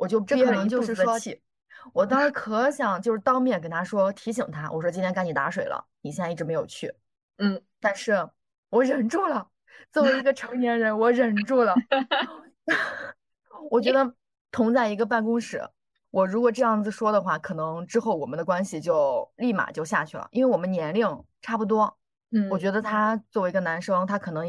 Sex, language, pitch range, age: female, Chinese, 185-260 Hz, 20-39